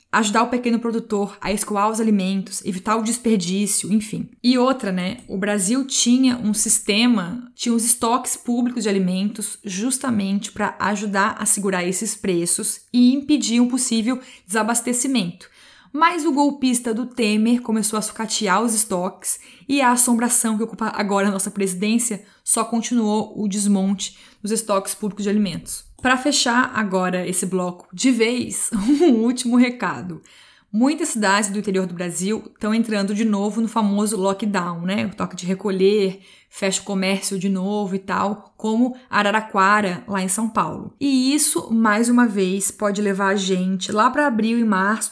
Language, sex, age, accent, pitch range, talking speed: Portuguese, female, 20-39, Brazilian, 195-235 Hz, 160 wpm